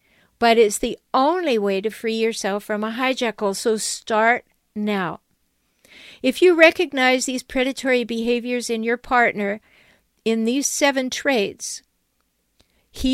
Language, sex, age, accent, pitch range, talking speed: English, female, 50-69, American, 215-255 Hz, 130 wpm